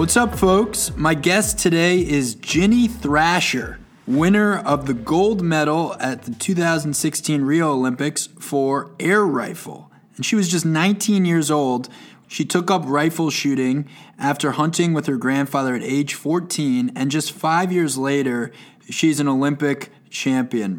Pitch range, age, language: 130-160 Hz, 20-39, English